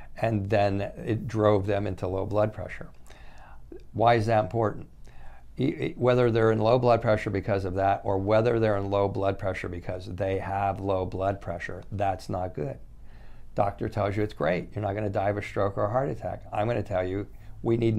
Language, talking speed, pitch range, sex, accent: English, 205 wpm, 95-110 Hz, male, American